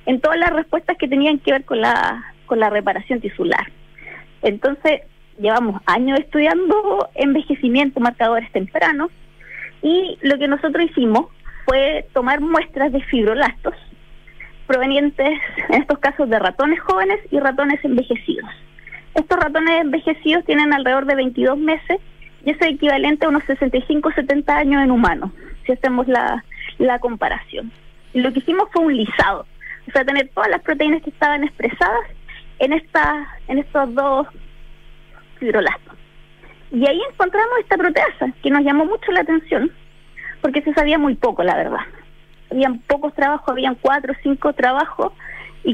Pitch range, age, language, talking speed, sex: 250-315 Hz, 20-39, Spanish, 150 wpm, female